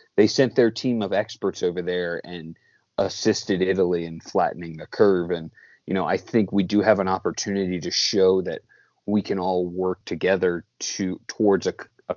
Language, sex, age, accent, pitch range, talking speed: English, male, 30-49, American, 85-100 Hz, 180 wpm